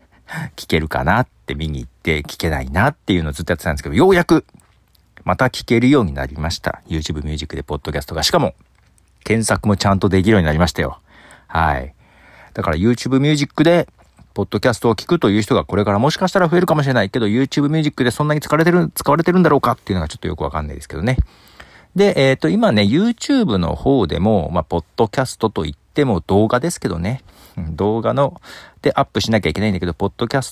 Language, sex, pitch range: Japanese, male, 85-140 Hz